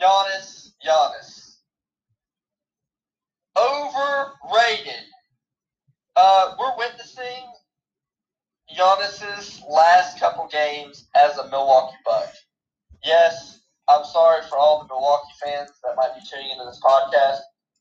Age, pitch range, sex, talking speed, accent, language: 20-39, 145-245 Hz, male, 100 wpm, American, English